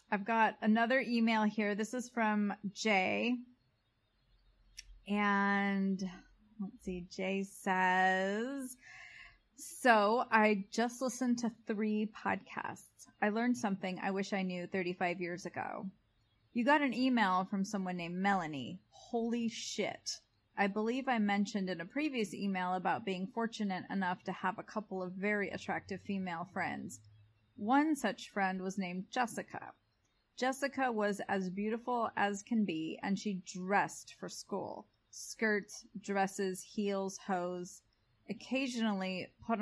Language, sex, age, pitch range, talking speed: English, female, 30-49, 185-230 Hz, 130 wpm